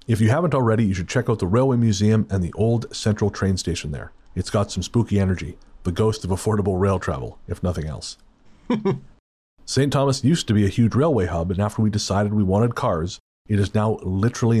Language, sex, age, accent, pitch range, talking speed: English, male, 40-59, American, 90-115 Hz, 215 wpm